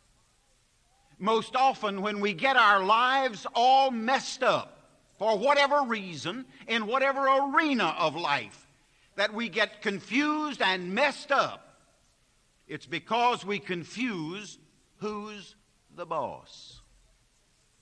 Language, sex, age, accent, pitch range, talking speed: English, male, 60-79, American, 195-265 Hz, 110 wpm